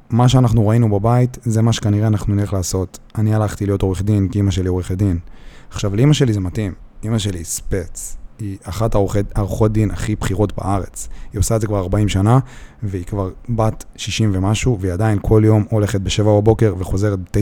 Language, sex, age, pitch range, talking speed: Hebrew, male, 30-49, 95-110 Hz, 195 wpm